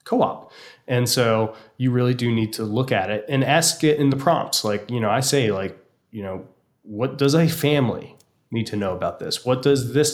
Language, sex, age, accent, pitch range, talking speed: English, male, 20-39, American, 105-125 Hz, 220 wpm